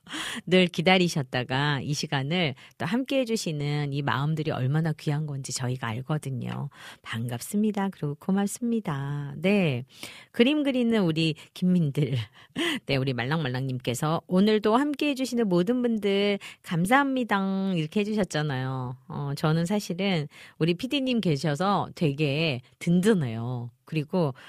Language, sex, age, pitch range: Korean, female, 40-59, 140-210 Hz